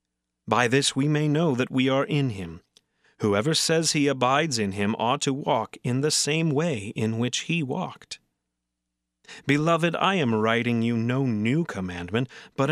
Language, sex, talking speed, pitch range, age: English, male, 170 wpm, 95-145 Hz, 30-49